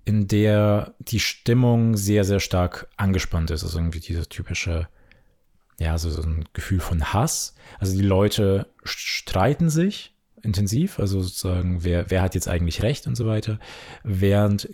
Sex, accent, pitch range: male, German, 90-105 Hz